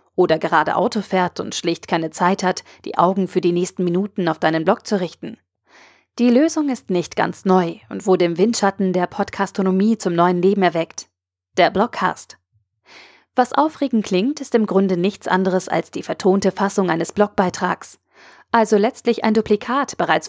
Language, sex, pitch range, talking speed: German, female, 180-225 Hz, 170 wpm